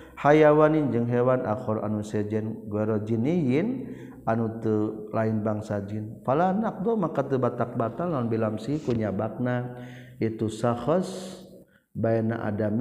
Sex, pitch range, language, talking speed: male, 105-130 Hz, Indonesian, 110 wpm